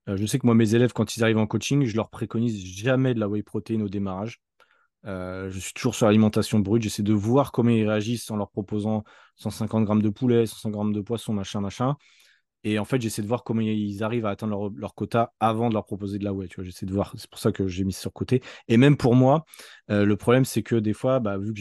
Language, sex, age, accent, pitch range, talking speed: French, male, 20-39, French, 105-120 Hz, 270 wpm